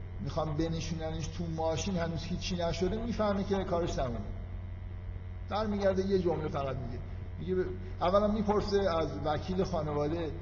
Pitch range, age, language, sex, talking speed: 90-150 Hz, 50-69, Persian, male, 140 wpm